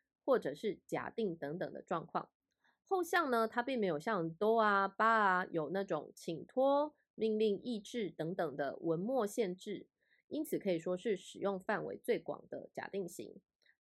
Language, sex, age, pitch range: Japanese, female, 20-39, 180-250 Hz